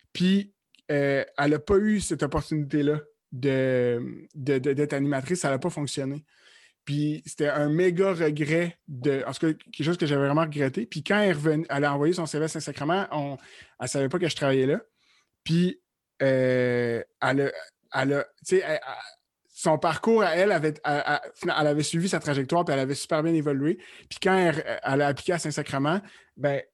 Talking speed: 195 wpm